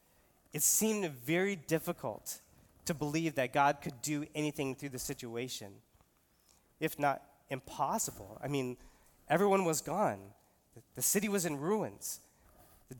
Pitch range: 125-175 Hz